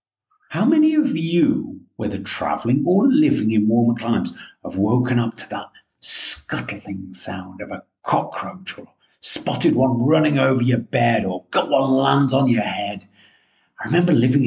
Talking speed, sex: 160 wpm, male